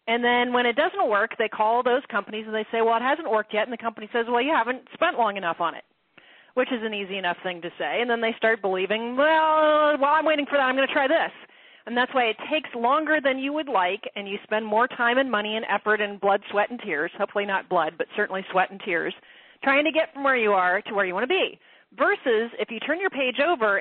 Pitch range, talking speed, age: 205-275 Hz, 265 wpm, 30-49